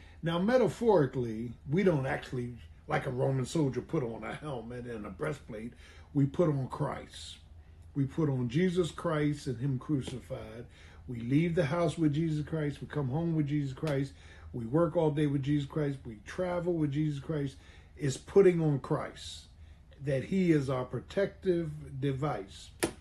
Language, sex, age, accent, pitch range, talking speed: English, male, 50-69, American, 95-160 Hz, 165 wpm